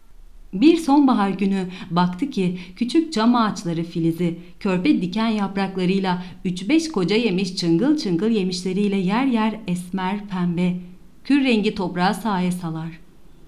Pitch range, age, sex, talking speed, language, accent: 175-220 Hz, 40-59, female, 120 wpm, Turkish, native